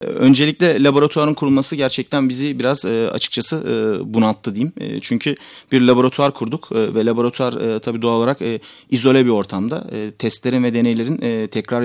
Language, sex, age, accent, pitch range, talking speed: Turkish, male, 40-59, native, 115-135 Hz, 125 wpm